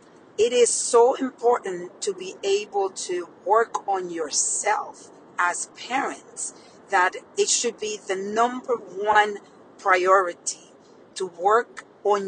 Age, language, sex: 50-69, English, female